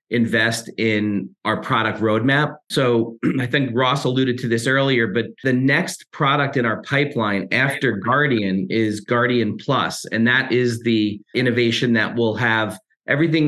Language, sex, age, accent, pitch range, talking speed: English, male, 40-59, American, 120-145 Hz, 150 wpm